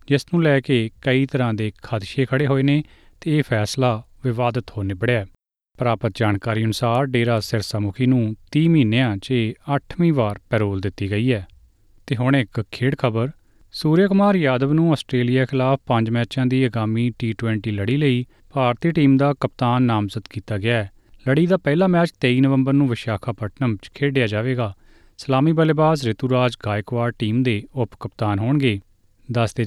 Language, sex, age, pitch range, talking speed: Punjabi, male, 30-49, 110-140 Hz, 150 wpm